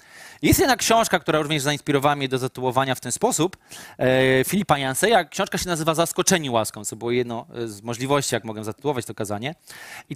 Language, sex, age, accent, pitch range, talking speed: Polish, male, 20-39, native, 125-165 Hz, 175 wpm